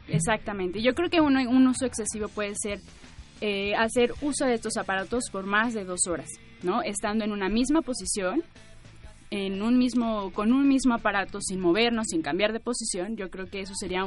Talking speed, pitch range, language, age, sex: 190 wpm, 200-250 Hz, Spanish, 20-39, female